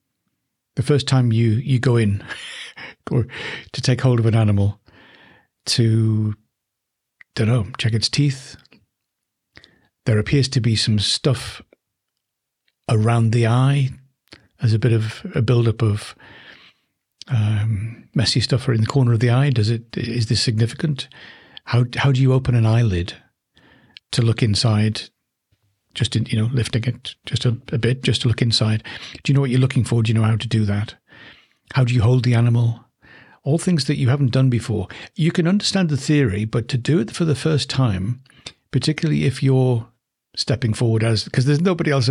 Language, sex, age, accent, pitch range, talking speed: English, male, 60-79, British, 110-135 Hz, 175 wpm